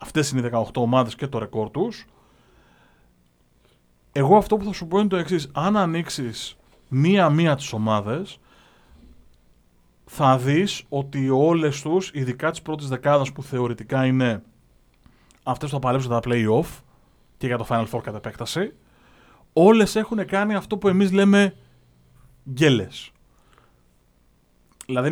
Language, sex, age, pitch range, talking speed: Greek, male, 30-49, 120-175 Hz, 135 wpm